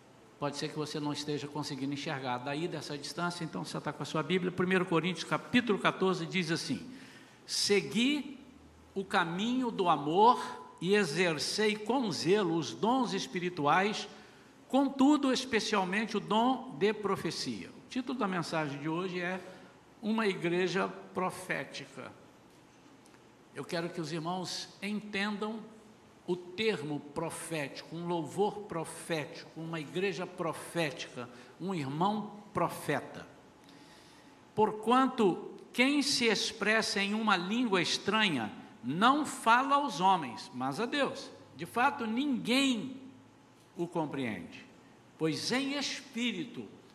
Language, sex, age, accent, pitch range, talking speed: Portuguese, male, 60-79, Brazilian, 165-235 Hz, 120 wpm